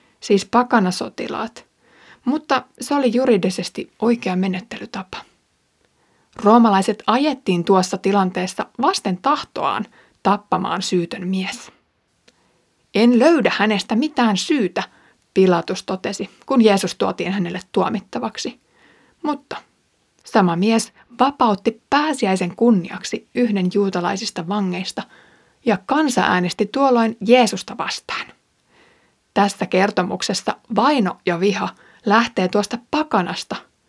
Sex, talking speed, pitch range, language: female, 90 wpm, 190-240 Hz, Finnish